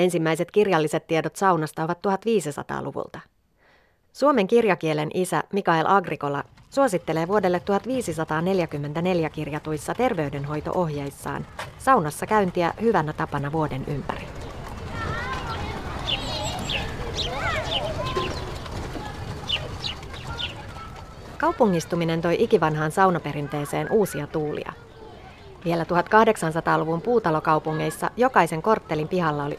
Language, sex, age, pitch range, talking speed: Finnish, female, 30-49, 155-200 Hz, 70 wpm